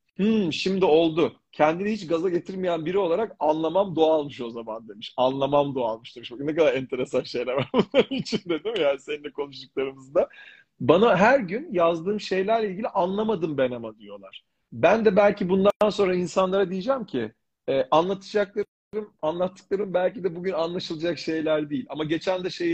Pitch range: 140-195 Hz